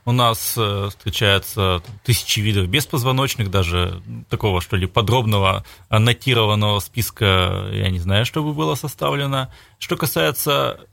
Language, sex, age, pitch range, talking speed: Russian, male, 30-49, 100-130 Hz, 120 wpm